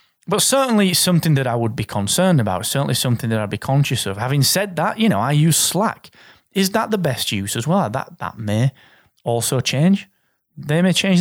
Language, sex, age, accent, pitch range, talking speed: English, male, 30-49, British, 115-180 Hz, 210 wpm